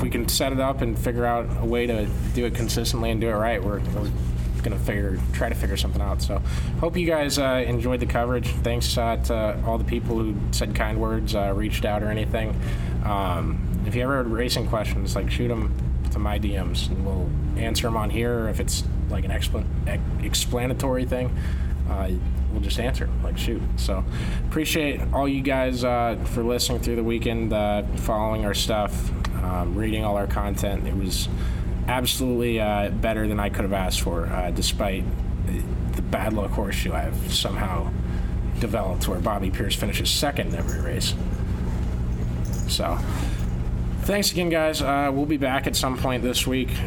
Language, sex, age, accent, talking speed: English, male, 20-39, American, 185 wpm